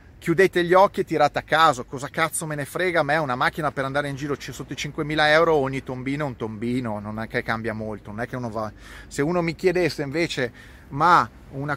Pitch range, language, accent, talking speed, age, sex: 120-165 Hz, Italian, native, 210 wpm, 30-49, male